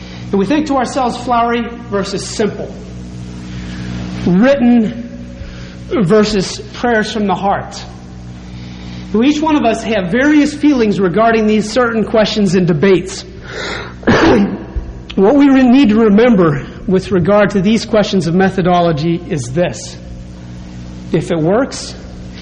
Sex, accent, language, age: male, American, English, 40-59